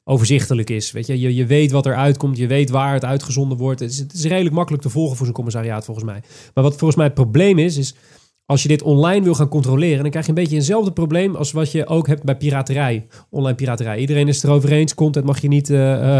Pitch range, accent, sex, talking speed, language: 130-155 Hz, Dutch, male, 250 wpm, Dutch